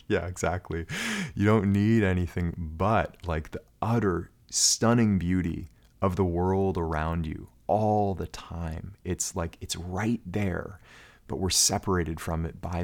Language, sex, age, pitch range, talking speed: English, male, 30-49, 80-95 Hz, 145 wpm